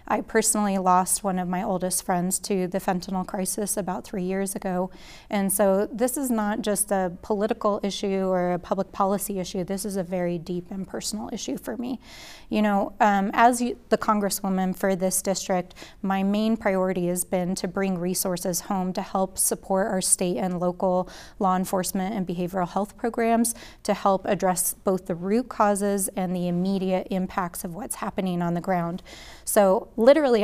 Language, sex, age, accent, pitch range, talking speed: English, female, 30-49, American, 185-205 Hz, 175 wpm